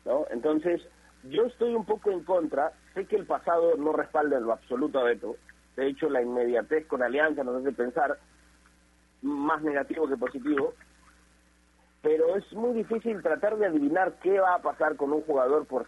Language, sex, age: Spanish, male, 40-59